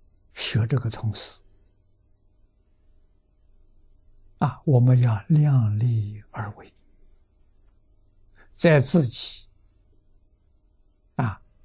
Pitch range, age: 100-125 Hz, 60-79